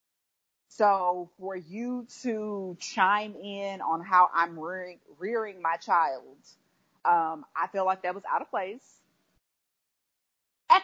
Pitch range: 180-235 Hz